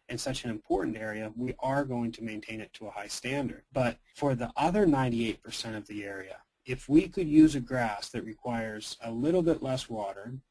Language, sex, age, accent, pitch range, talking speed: English, male, 30-49, American, 110-130 Hz, 205 wpm